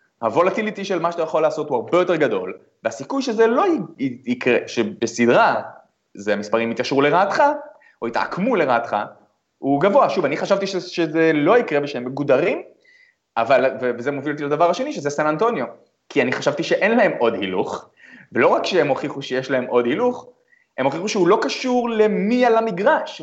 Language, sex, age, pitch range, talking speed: Hebrew, male, 30-49, 140-215 Hz, 175 wpm